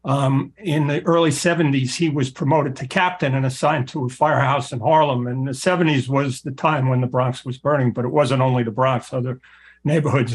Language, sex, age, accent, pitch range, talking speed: English, male, 60-79, American, 130-155 Hz, 210 wpm